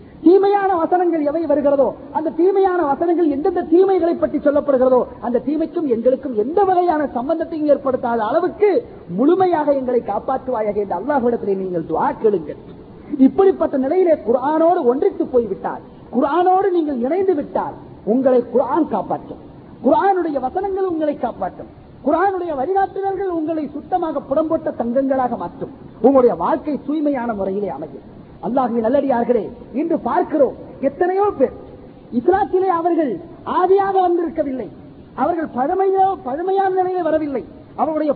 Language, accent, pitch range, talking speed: Tamil, native, 260-355 Hz, 105 wpm